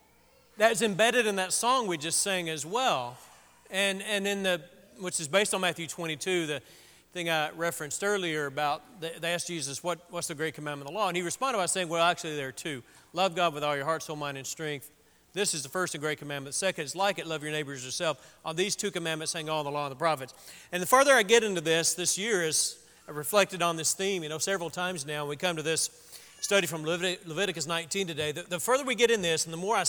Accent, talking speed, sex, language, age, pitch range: American, 250 wpm, male, English, 40-59, 160-210 Hz